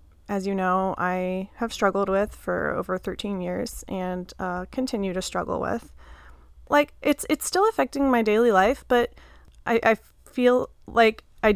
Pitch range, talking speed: 190-230 Hz, 160 wpm